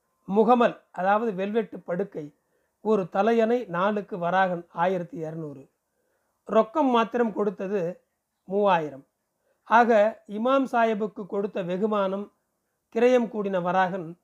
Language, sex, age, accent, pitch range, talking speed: Tamil, male, 40-59, native, 180-225 Hz, 95 wpm